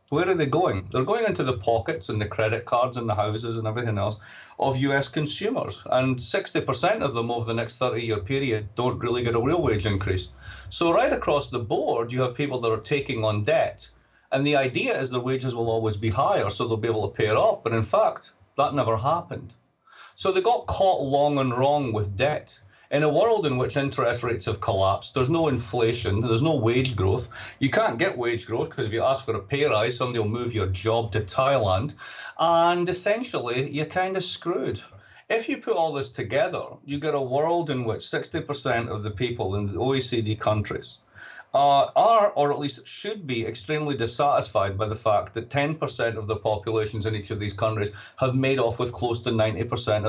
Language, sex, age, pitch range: English, male, 40-59, 110-145 Hz